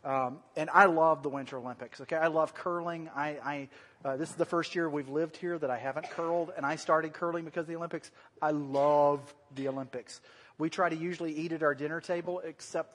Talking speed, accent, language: 220 wpm, American, English